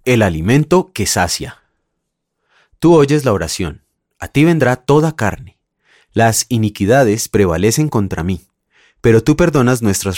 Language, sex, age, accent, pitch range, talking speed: Spanish, male, 30-49, Colombian, 95-135 Hz, 130 wpm